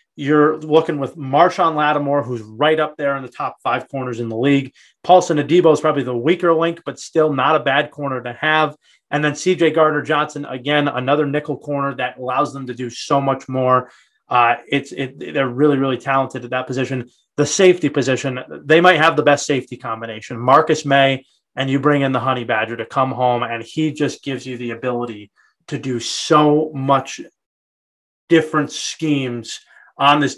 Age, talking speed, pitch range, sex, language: 30-49, 190 wpm, 130-150 Hz, male, English